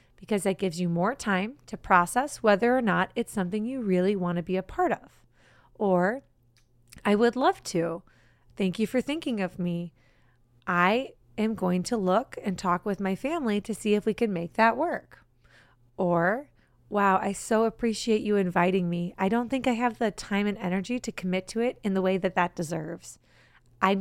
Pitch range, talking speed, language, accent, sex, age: 180-240 Hz, 195 wpm, English, American, female, 30-49